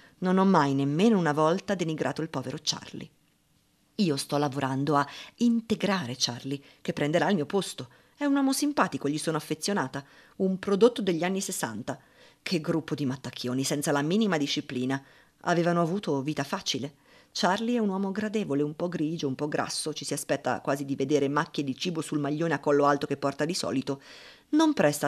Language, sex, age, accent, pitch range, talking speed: Italian, female, 50-69, native, 130-165 Hz, 180 wpm